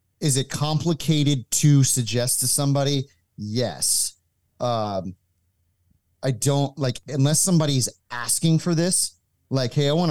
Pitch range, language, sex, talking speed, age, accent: 100-135 Hz, English, male, 125 wpm, 30-49, American